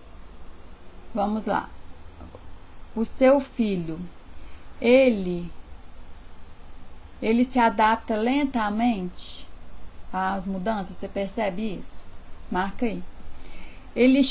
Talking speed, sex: 75 wpm, female